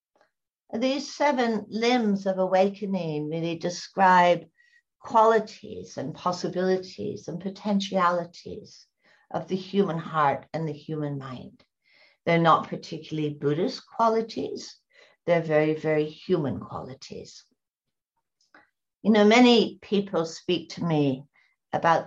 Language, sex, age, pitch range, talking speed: English, female, 60-79, 160-210 Hz, 105 wpm